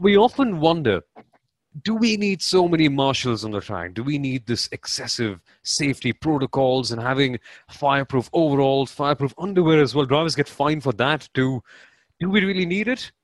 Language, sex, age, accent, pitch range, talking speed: English, male, 30-49, Indian, 125-180 Hz, 170 wpm